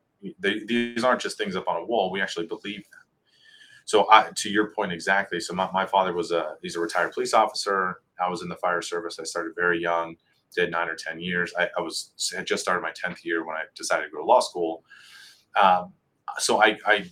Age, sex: 30-49, male